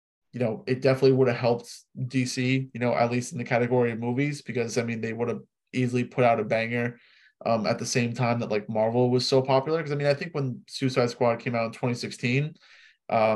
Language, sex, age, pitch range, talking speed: English, male, 20-39, 120-140 Hz, 230 wpm